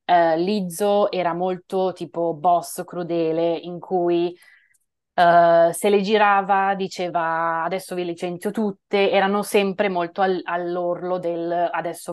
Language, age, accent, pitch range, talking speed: Italian, 20-39, native, 170-200 Hz, 110 wpm